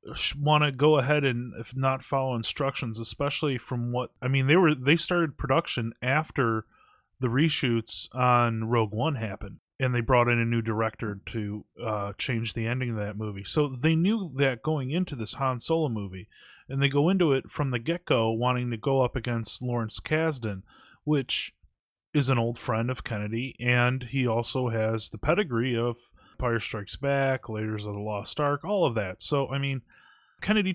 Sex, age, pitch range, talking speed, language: male, 30-49, 115-140 Hz, 185 wpm, English